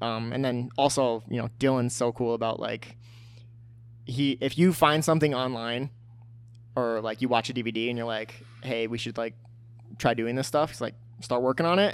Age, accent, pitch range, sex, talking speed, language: 20-39, American, 115-130 Hz, male, 200 wpm, English